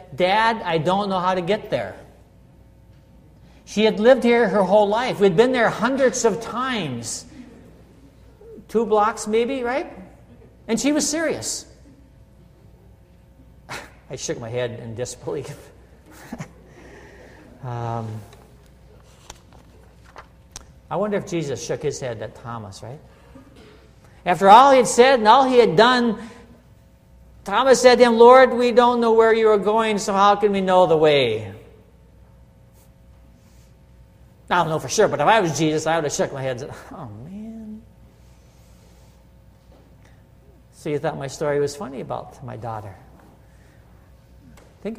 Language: English